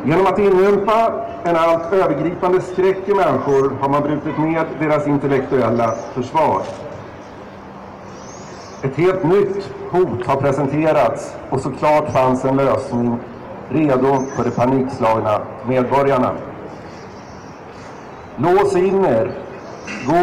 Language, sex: Swedish, male